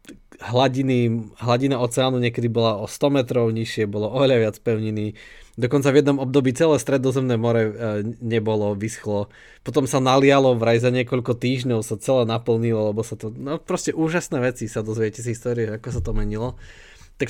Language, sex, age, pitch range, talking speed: Slovak, male, 20-39, 110-125 Hz, 165 wpm